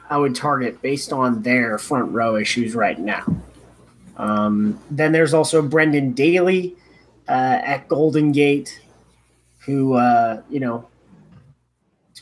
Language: English